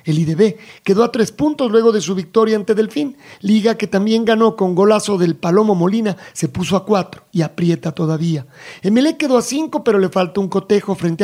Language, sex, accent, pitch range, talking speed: Spanish, male, Mexican, 170-220 Hz, 205 wpm